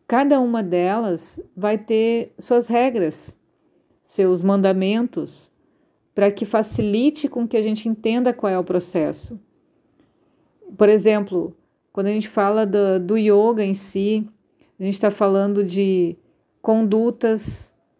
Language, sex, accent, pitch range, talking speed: Portuguese, female, Brazilian, 185-220 Hz, 125 wpm